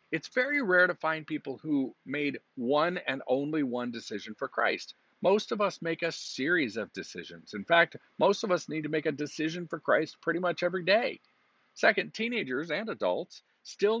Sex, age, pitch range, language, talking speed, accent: male, 50-69, 110-160 Hz, English, 190 wpm, American